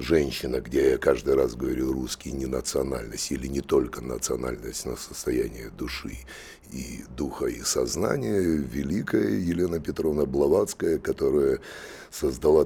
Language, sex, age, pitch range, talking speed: Russian, male, 60-79, 70-100 Hz, 125 wpm